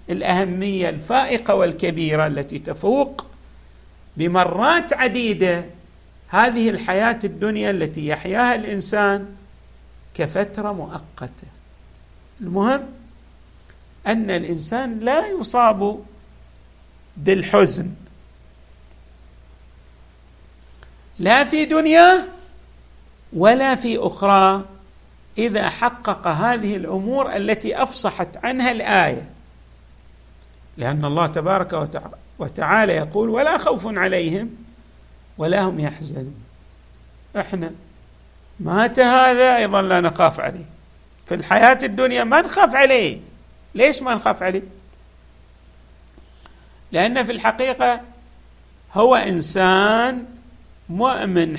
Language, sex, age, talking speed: Arabic, male, 50-69, 80 wpm